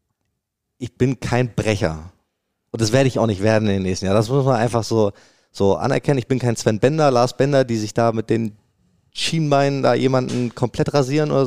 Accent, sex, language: German, male, German